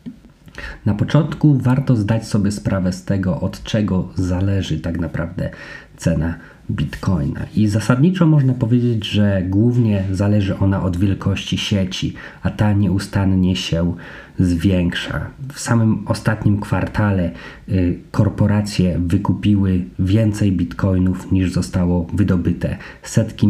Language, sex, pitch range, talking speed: Polish, male, 90-110 Hz, 105 wpm